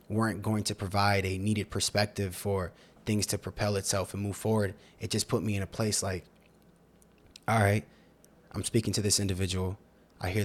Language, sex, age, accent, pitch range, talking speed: English, male, 20-39, American, 95-110 Hz, 185 wpm